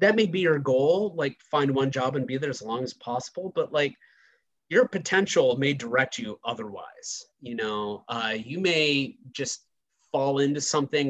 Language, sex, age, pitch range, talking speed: English, male, 30-49, 125-175 Hz, 180 wpm